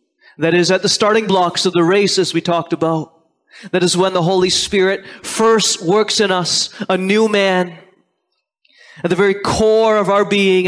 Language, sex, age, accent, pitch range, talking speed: English, male, 30-49, American, 165-220 Hz, 185 wpm